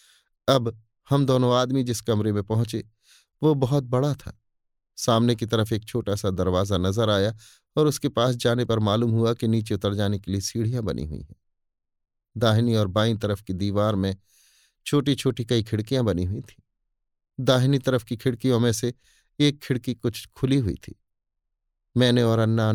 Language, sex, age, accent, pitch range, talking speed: Hindi, male, 30-49, native, 100-120 Hz, 175 wpm